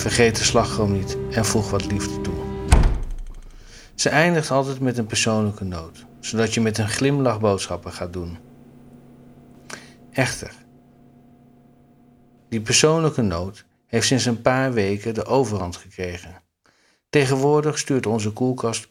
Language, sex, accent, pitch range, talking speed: Dutch, male, Dutch, 95-120 Hz, 125 wpm